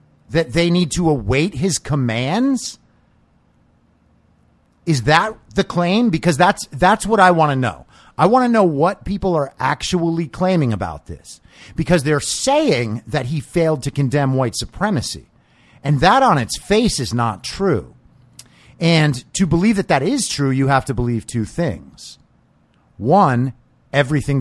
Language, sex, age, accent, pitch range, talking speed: English, male, 50-69, American, 120-180 Hz, 155 wpm